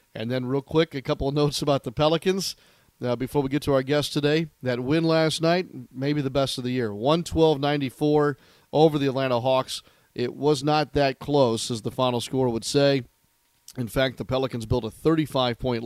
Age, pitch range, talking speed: 40-59, 120-145 Hz, 210 wpm